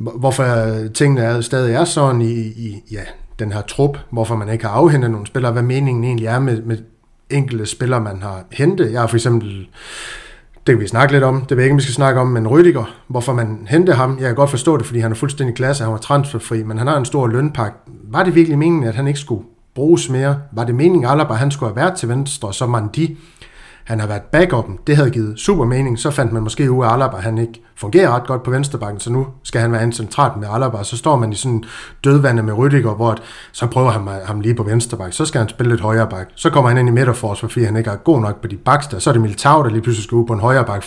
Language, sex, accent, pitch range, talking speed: Danish, male, native, 110-135 Hz, 265 wpm